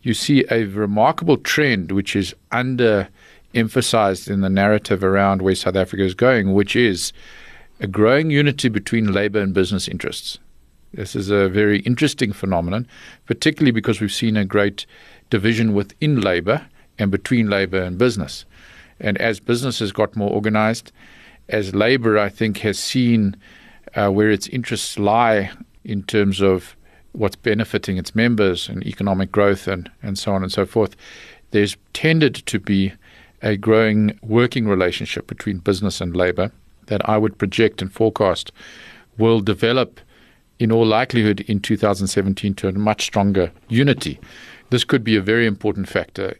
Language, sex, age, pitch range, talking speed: English, male, 50-69, 95-115 Hz, 155 wpm